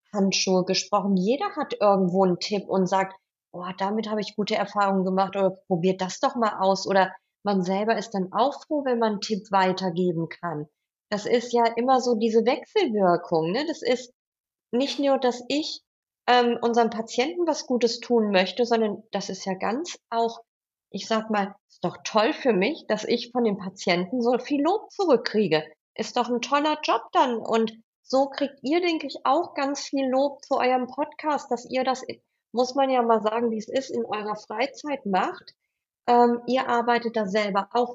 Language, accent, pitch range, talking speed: German, German, 200-260 Hz, 190 wpm